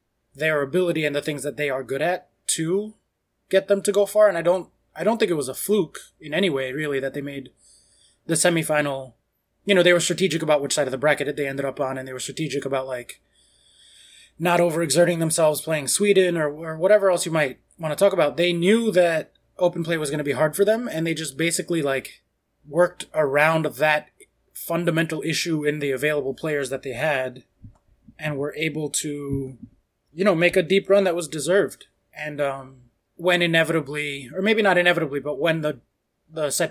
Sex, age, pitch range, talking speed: male, 20-39, 140-175 Hz, 205 wpm